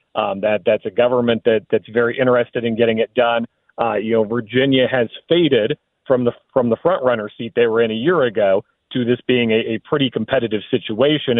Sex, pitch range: male, 120-140 Hz